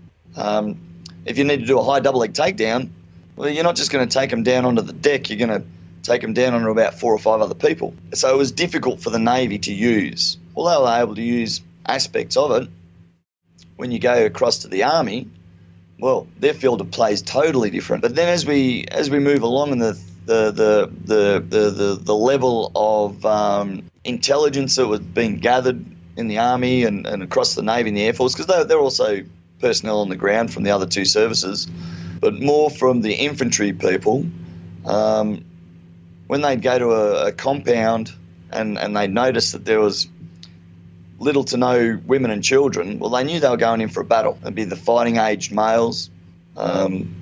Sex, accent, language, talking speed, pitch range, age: male, Australian, English, 205 wpm, 85-125 Hz, 30-49